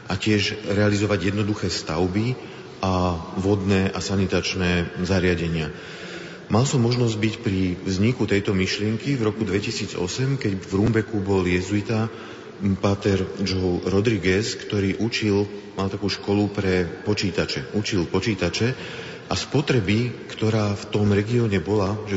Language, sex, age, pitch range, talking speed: Slovak, male, 40-59, 95-110 Hz, 125 wpm